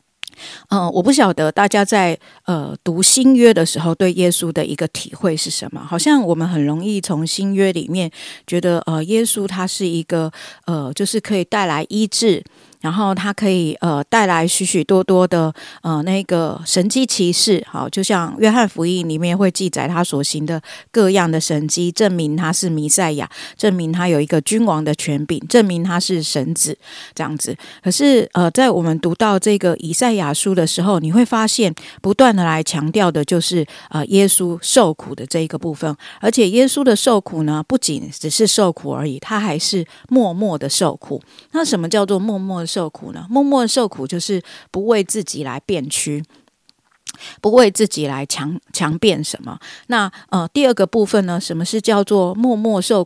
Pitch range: 160-215 Hz